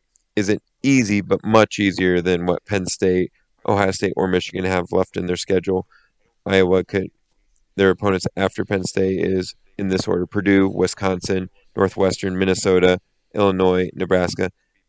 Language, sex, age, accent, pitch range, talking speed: English, male, 30-49, American, 90-100 Hz, 145 wpm